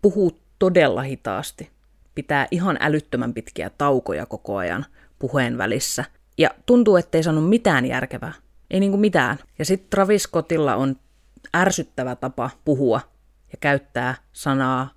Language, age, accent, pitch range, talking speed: Finnish, 30-49, native, 130-170 Hz, 130 wpm